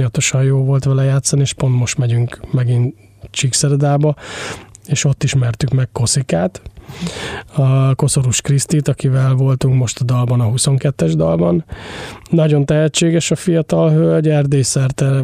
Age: 20-39